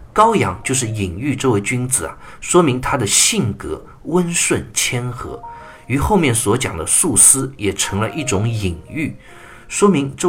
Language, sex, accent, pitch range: Chinese, male, native, 95-130 Hz